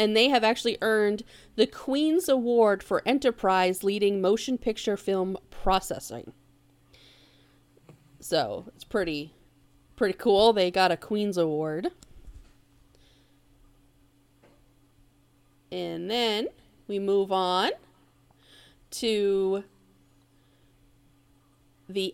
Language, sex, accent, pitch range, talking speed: English, female, American, 140-215 Hz, 85 wpm